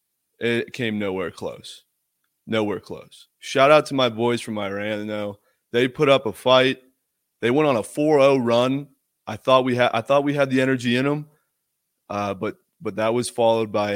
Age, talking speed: 30-49, 190 wpm